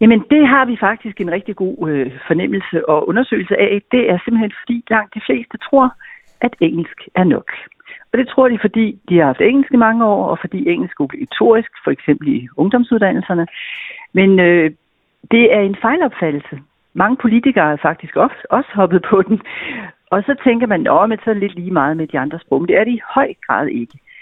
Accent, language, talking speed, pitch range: native, Danish, 205 wpm, 160-230 Hz